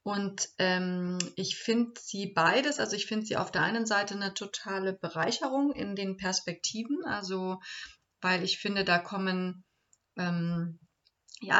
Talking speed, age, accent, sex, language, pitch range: 145 wpm, 30-49, German, female, German, 185-205 Hz